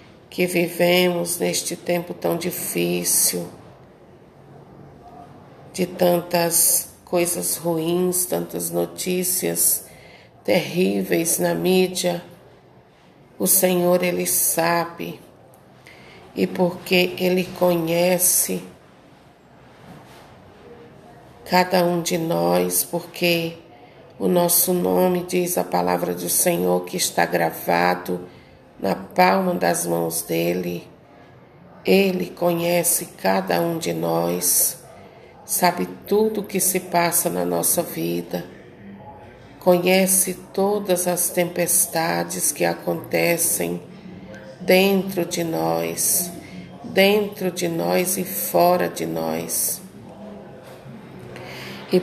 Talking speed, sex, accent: 90 wpm, female, Brazilian